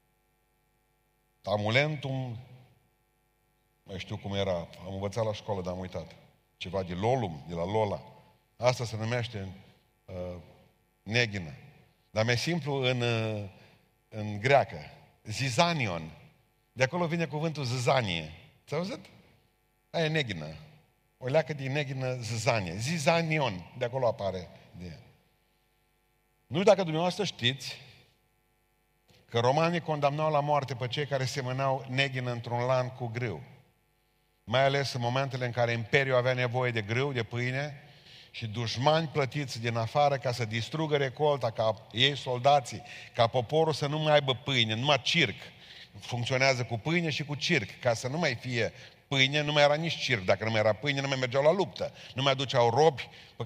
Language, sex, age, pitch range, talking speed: Romanian, male, 50-69, 115-145 Hz, 155 wpm